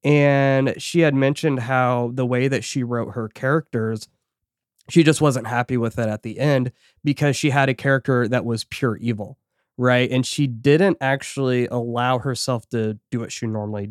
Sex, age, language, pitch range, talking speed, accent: male, 20-39, English, 115-135 Hz, 180 wpm, American